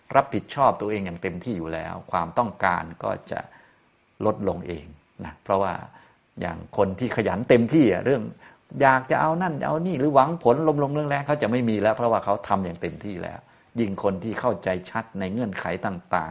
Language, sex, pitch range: Thai, male, 95-130 Hz